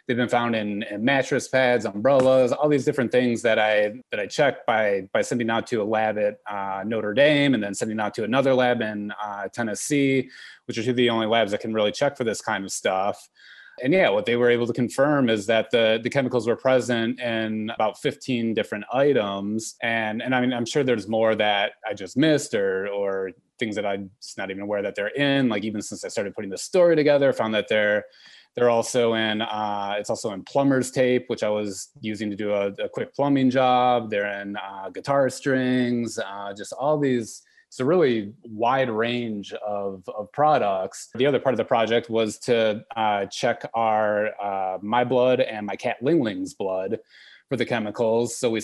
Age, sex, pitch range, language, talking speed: 30-49, male, 105-125 Hz, English, 210 wpm